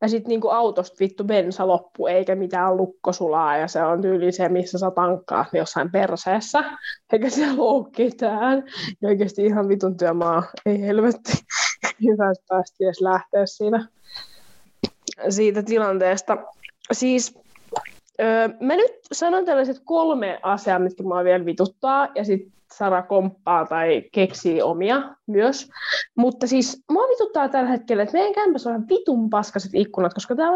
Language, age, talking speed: Finnish, 20-39, 135 wpm